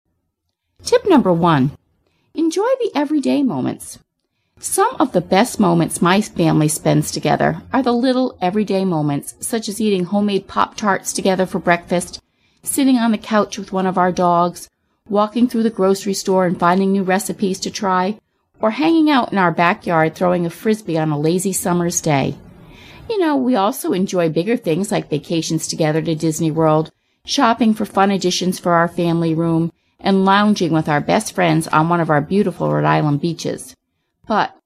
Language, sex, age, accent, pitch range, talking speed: English, female, 40-59, American, 165-220 Hz, 170 wpm